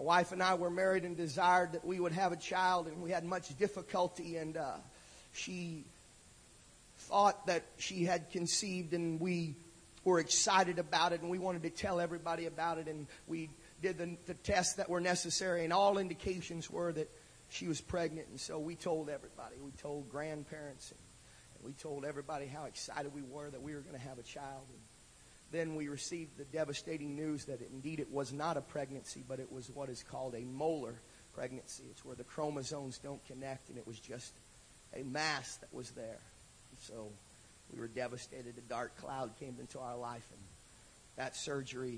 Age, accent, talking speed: 40-59, American, 190 wpm